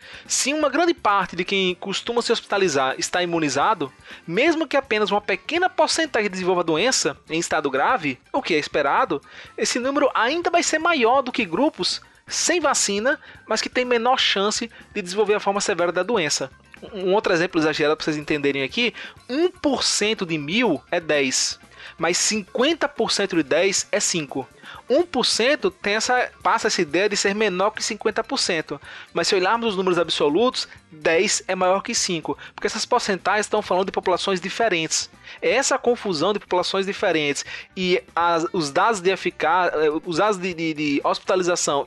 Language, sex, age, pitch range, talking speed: Portuguese, male, 20-39, 175-245 Hz, 170 wpm